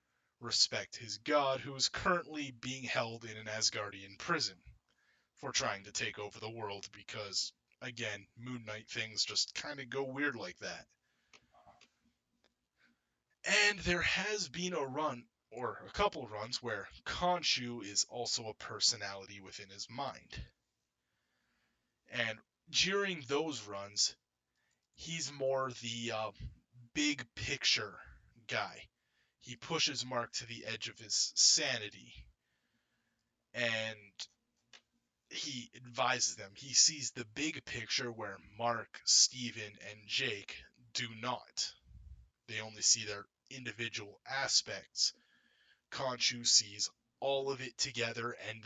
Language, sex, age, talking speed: English, male, 30-49, 120 wpm